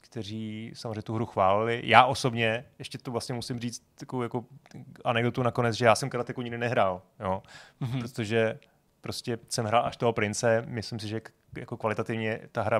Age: 30-49